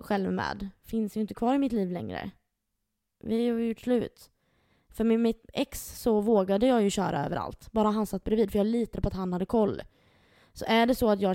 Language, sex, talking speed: Swedish, female, 220 wpm